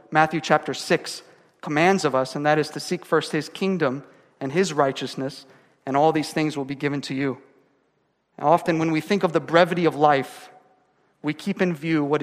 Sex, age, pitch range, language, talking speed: male, 40-59, 150-180 Hz, English, 195 wpm